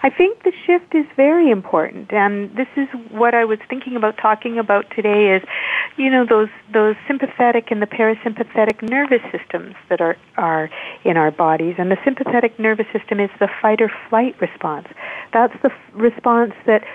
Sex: female